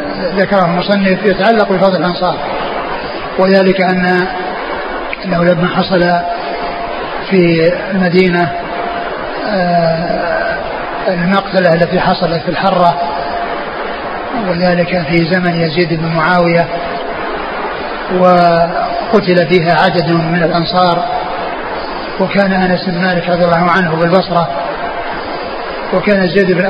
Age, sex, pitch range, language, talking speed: 30-49, male, 175-195 Hz, Arabic, 90 wpm